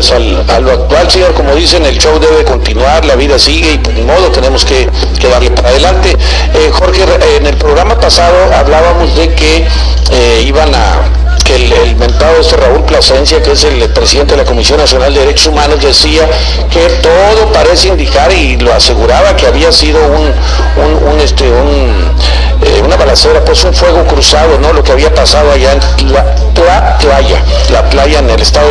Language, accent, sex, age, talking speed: English, Mexican, male, 50-69, 180 wpm